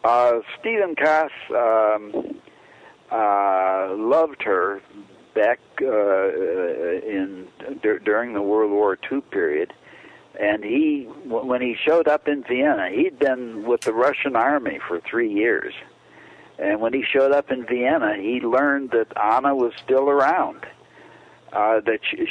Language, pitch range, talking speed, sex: English, 110-160 Hz, 140 wpm, male